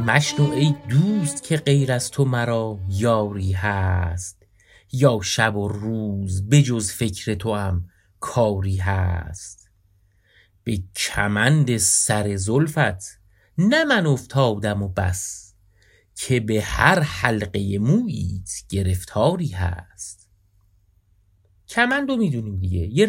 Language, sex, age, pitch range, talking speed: Persian, male, 30-49, 95-145 Hz, 100 wpm